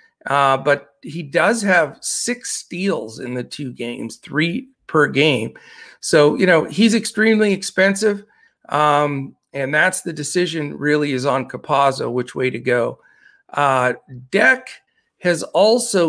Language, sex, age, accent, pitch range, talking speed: English, male, 40-59, American, 135-195 Hz, 140 wpm